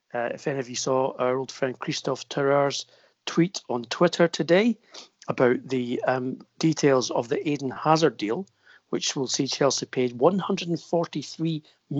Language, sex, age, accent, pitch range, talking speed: English, male, 40-59, British, 125-160 Hz, 150 wpm